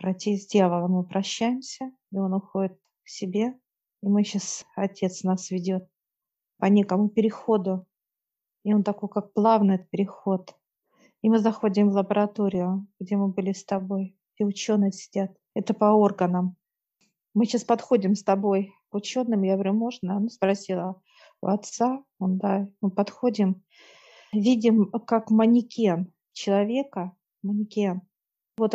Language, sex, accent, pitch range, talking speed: Russian, female, native, 195-220 Hz, 135 wpm